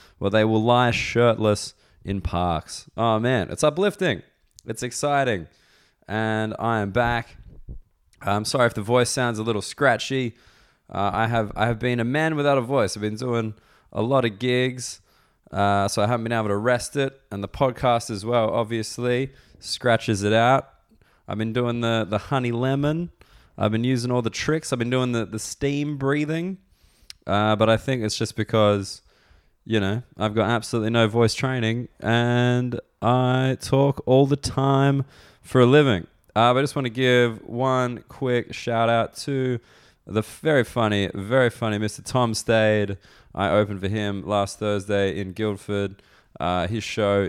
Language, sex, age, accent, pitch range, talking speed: English, male, 20-39, Australian, 100-125 Hz, 175 wpm